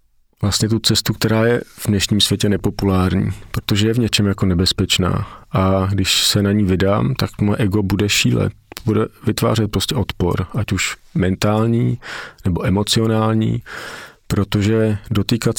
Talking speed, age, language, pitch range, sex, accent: 140 wpm, 40-59, Czech, 95-110 Hz, male, native